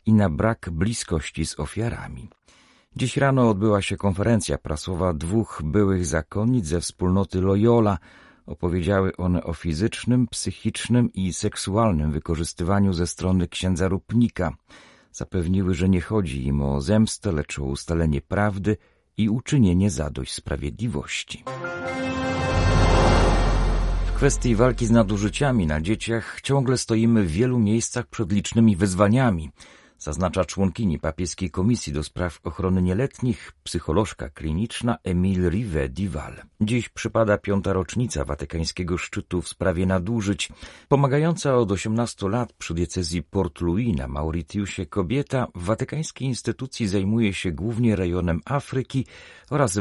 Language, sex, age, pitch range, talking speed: Polish, male, 40-59, 85-115 Hz, 125 wpm